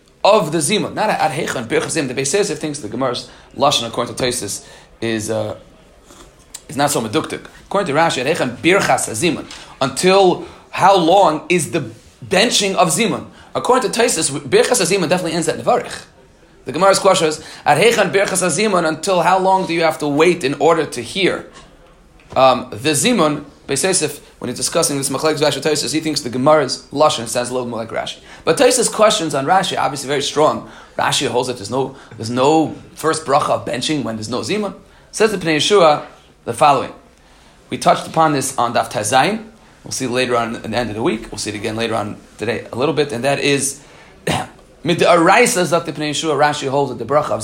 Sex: male